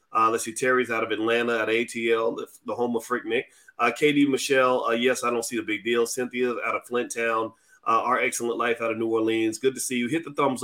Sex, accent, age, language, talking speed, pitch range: male, American, 30-49, English, 255 wpm, 115-150 Hz